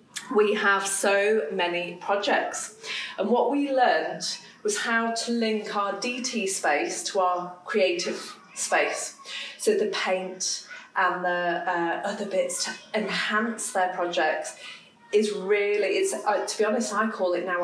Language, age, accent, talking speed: English, 30-49, British, 145 wpm